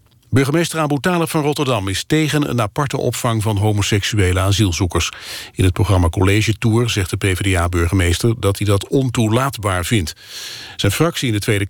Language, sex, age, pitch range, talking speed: Dutch, male, 50-69, 100-120 Hz, 155 wpm